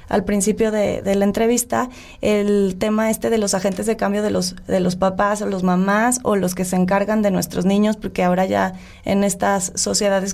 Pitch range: 195-225 Hz